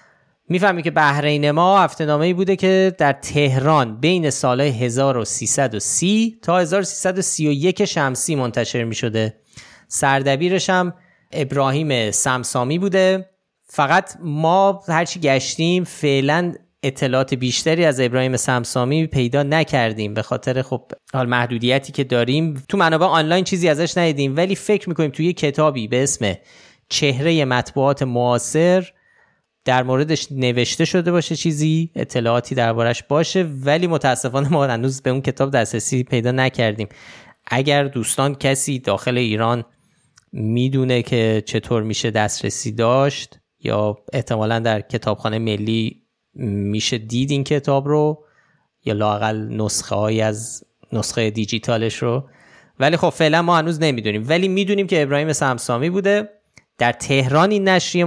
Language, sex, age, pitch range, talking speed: Persian, male, 30-49, 120-165 Hz, 130 wpm